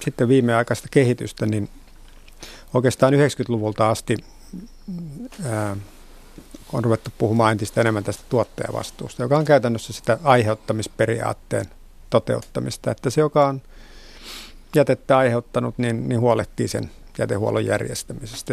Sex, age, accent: male, 50-69, native